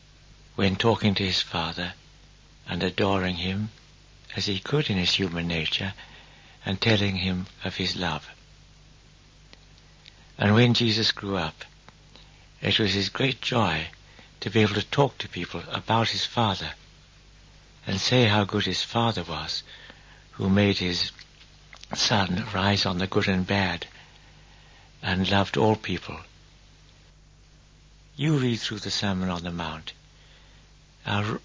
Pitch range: 90-110 Hz